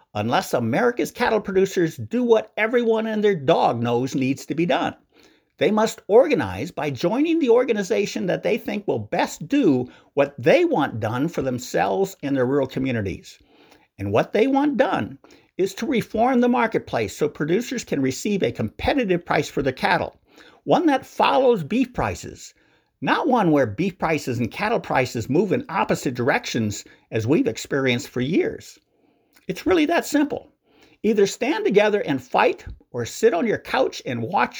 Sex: male